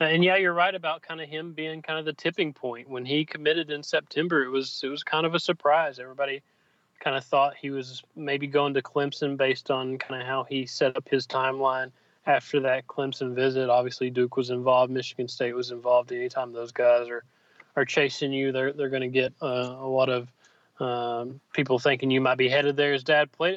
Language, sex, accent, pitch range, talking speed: English, male, American, 130-150 Hz, 220 wpm